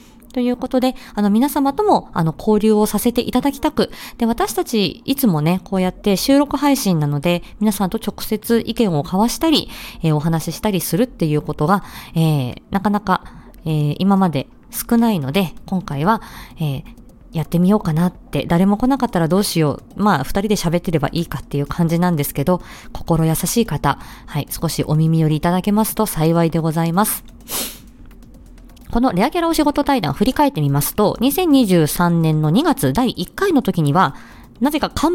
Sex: female